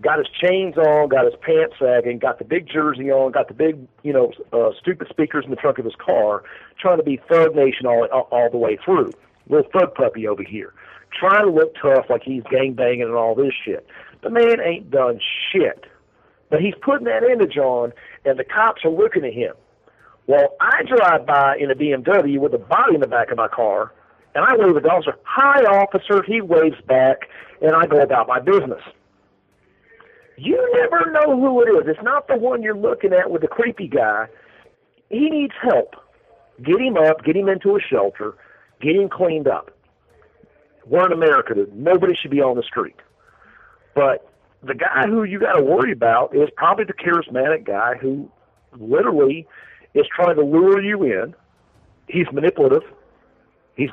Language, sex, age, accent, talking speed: English, male, 50-69, American, 190 wpm